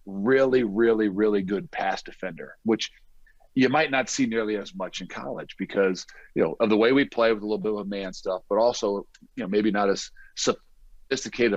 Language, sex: English, male